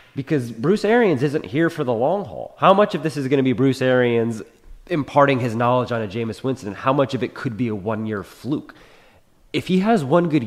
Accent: American